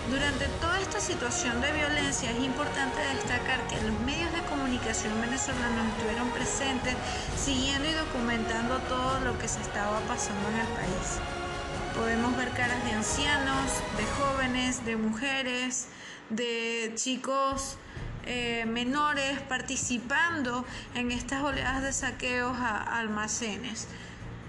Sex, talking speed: female, 125 wpm